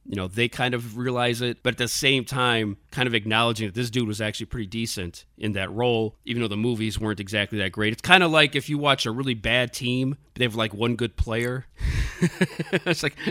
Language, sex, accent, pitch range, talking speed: English, male, American, 110-135 Hz, 235 wpm